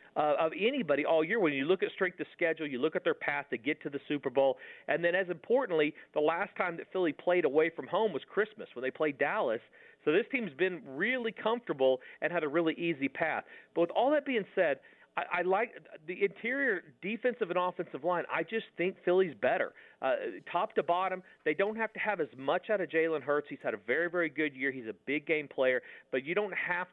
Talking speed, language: 230 wpm, English